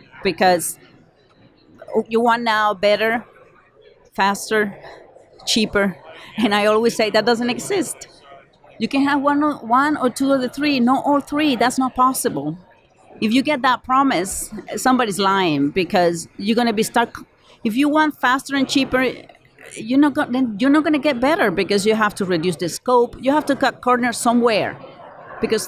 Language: English